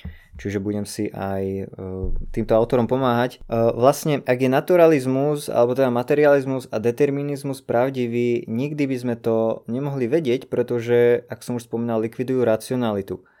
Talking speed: 145 wpm